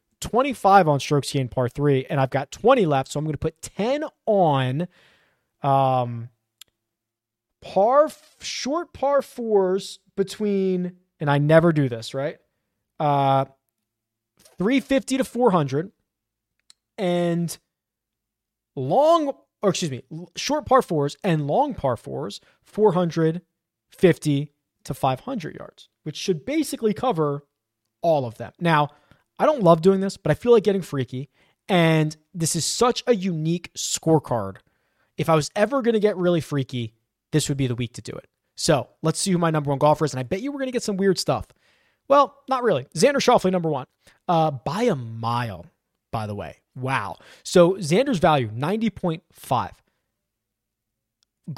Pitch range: 135-195 Hz